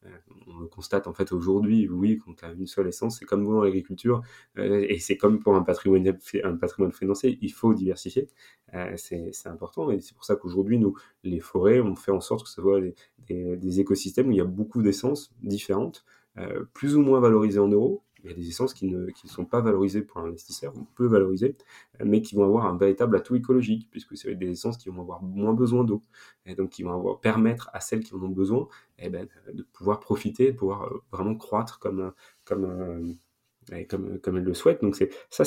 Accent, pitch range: French, 95-110 Hz